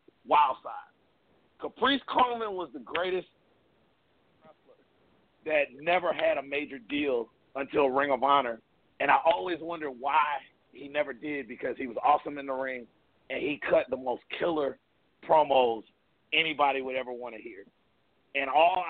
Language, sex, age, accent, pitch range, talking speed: English, male, 40-59, American, 130-170 Hz, 150 wpm